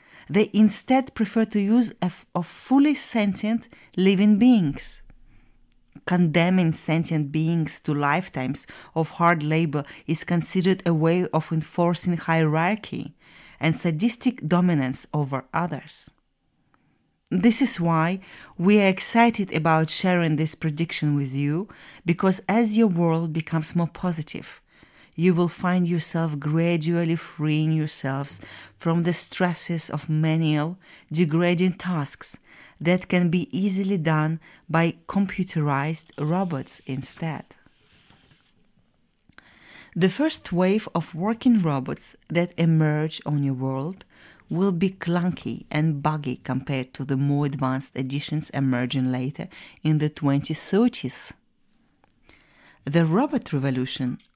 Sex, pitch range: female, 150-185 Hz